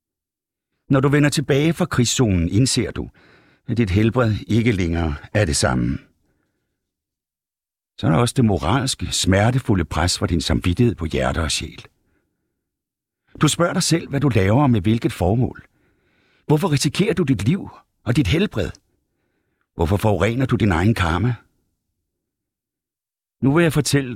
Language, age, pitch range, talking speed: Danish, 60-79, 90-130 Hz, 150 wpm